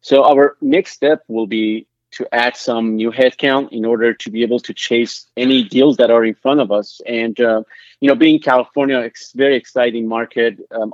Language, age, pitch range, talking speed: English, 30-49, 115-140 Hz, 210 wpm